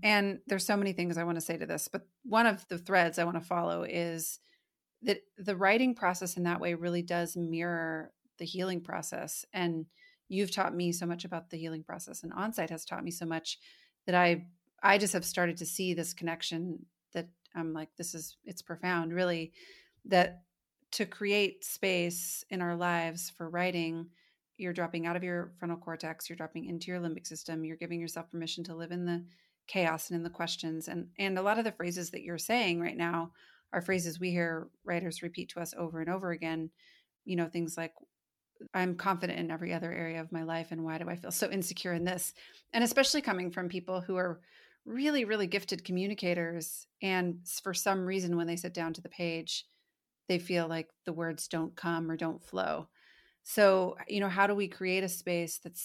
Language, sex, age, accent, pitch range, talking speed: English, female, 30-49, American, 165-185 Hz, 205 wpm